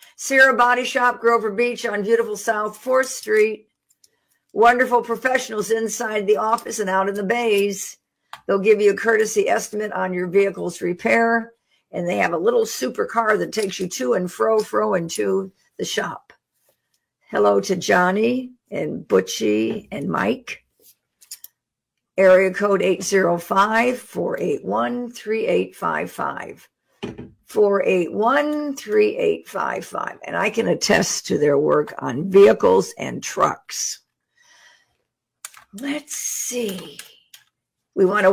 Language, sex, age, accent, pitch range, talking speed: English, female, 60-79, American, 195-245 Hz, 125 wpm